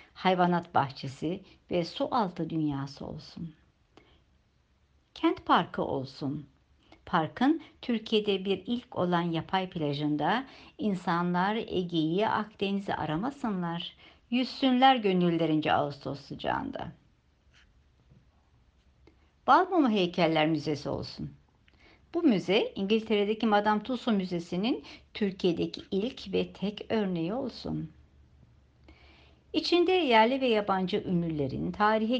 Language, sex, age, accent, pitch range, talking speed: Turkish, male, 60-79, native, 140-210 Hz, 90 wpm